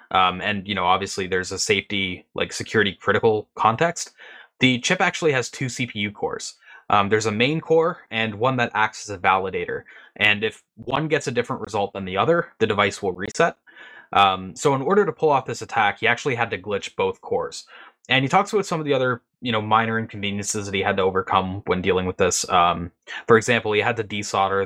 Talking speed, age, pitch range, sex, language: 215 wpm, 20-39, 100-130 Hz, male, English